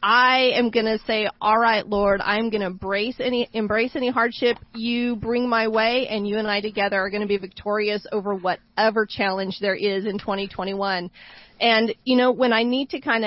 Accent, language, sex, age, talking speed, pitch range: American, English, female, 40-59, 205 wpm, 200-230 Hz